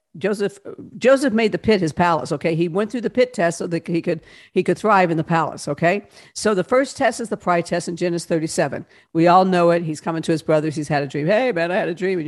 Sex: female